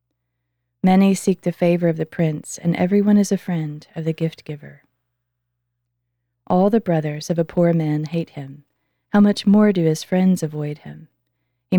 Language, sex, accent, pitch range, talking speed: English, female, American, 120-185 Hz, 175 wpm